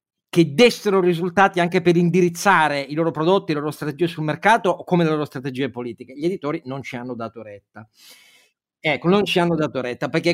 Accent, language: native, Italian